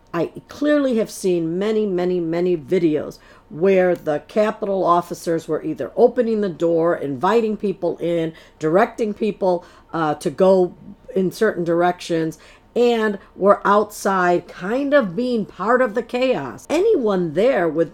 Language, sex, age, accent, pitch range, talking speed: English, female, 50-69, American, 175-225 Hz, 135 wpm